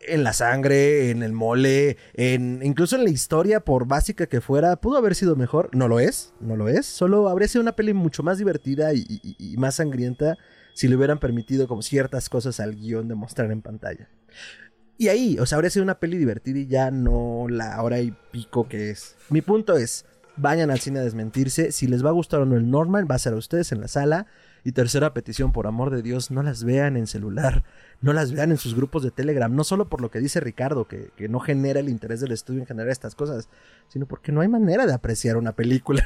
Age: 30-49